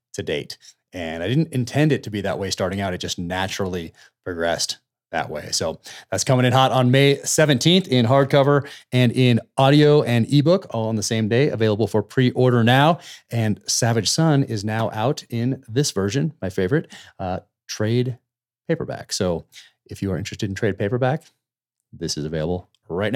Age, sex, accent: 30-49, male, American